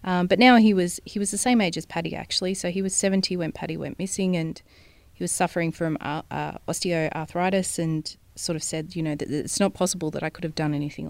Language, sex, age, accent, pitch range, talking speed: English, female, 30-49, Australian, 155-180 Hz, 245 wpm